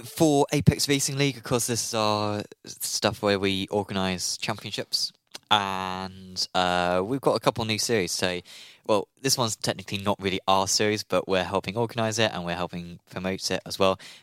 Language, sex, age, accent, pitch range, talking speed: English, male, 20-39, British, 95-110 Hz, 180 wpm